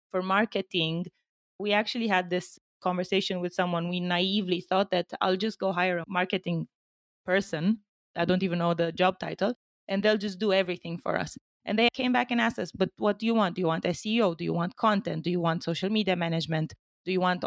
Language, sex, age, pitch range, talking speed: English, female, 20-39, 180-210 Hz, 215 wpm